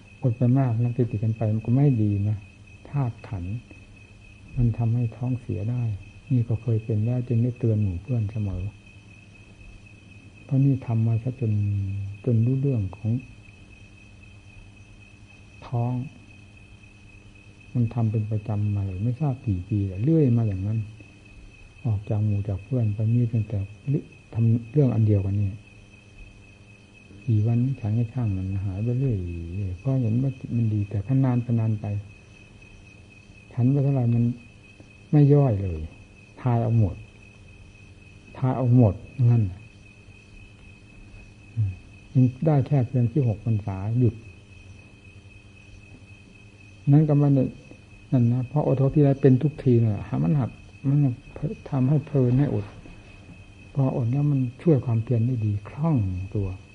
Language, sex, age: Thai, male, 60-79